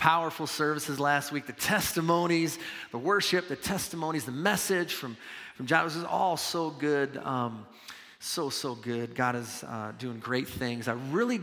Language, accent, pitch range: English, American, 130-155 Hz